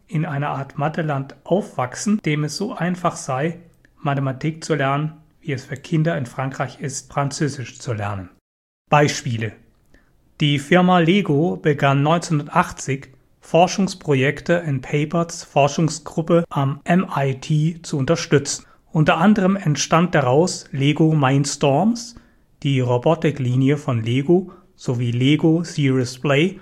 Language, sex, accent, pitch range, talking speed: English, male, German, 135-170 Hz, 115 wpm